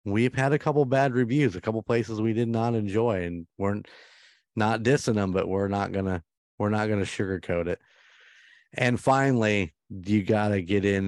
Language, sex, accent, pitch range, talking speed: English, male, American, 95-115 Hz, 205 wpm